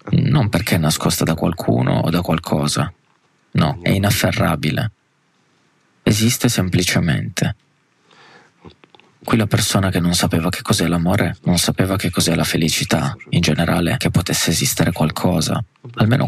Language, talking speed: Italian, 130 wpm